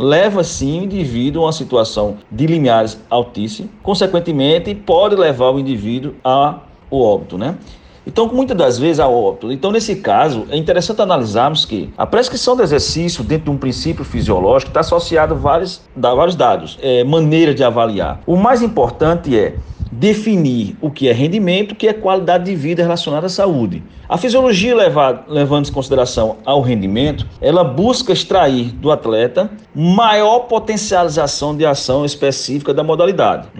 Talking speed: 160 wpm